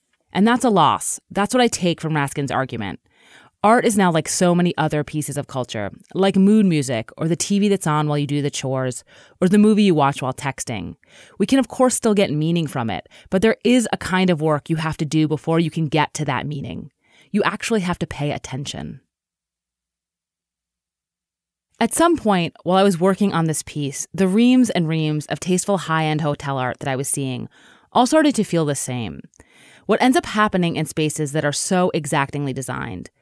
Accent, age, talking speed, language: American, 30-49, 205 wpm, English